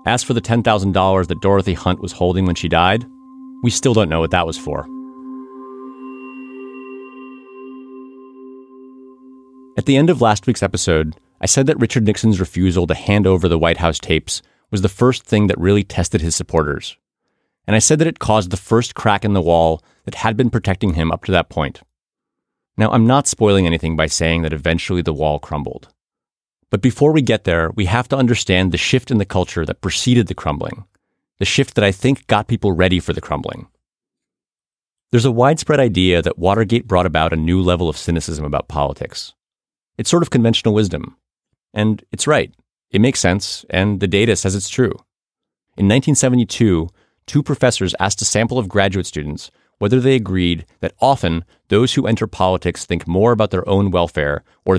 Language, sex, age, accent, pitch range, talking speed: English, male, 30-49, American, 90-125 Hz, 185 wpm